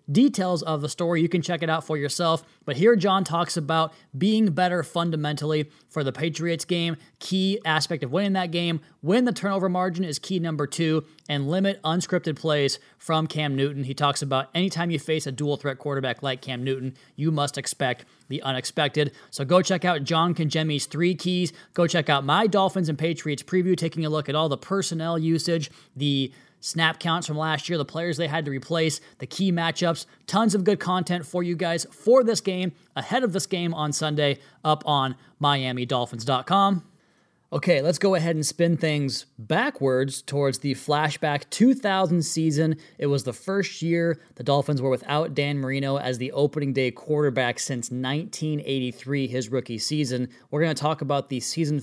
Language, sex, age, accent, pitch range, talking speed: English, male, 20-39, American, 140-170 Hz, 185 wpm